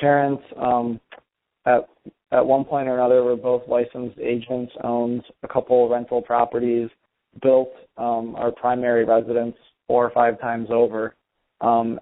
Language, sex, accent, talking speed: English, male, American, 145 wpm